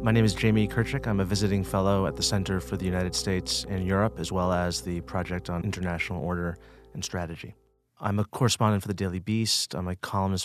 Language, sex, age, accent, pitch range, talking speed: English, male, 30-49, American, 95-105 Hz, 220 wpm